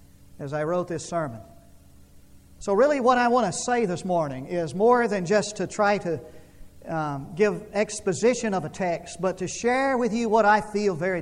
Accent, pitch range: American, 145-210 Hz